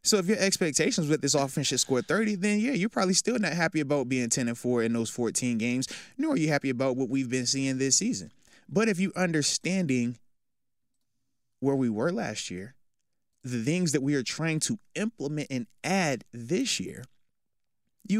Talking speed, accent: 195 wpm, American